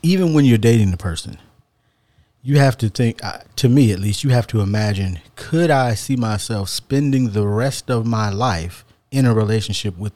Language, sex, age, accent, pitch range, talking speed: English, male, 30-49, American, 105-125 Hz, 190 wpm